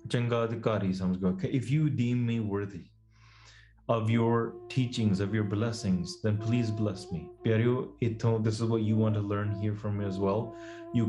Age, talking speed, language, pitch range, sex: 20-39, 150 wpm, English, 105-125 Hz, male